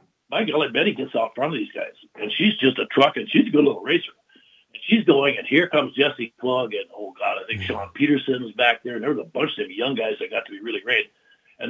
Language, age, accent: English, 60-79, American